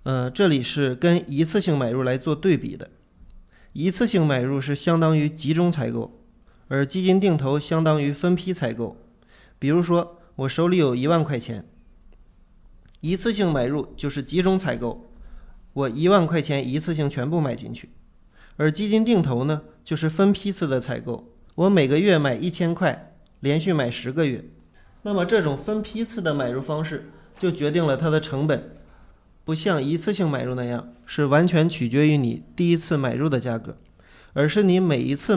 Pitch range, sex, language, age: 130-170 Hz, male, Chinese, 20-39